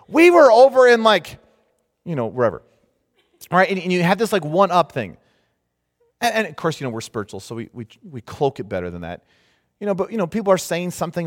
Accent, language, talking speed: American, English, 230 wpm